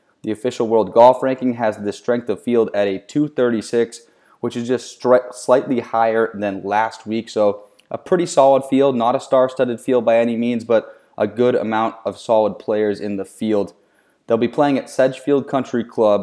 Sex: male